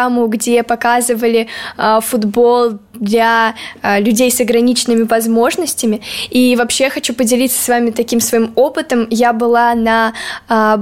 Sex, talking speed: female, 130 wpm